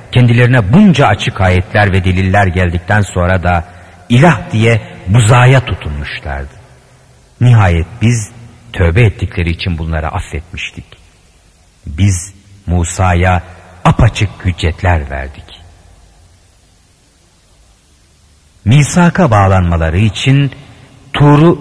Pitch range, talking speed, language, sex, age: 90-125 Hz, 80 wpm, Turkish, male, 50-69